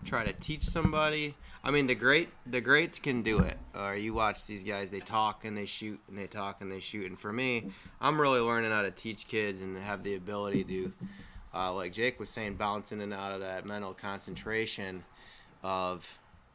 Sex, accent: male, American